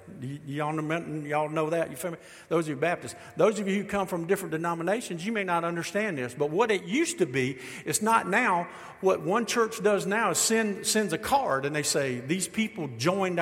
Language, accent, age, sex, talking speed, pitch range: English, American, 50-69, male, 215 wpm, 160-225 Hz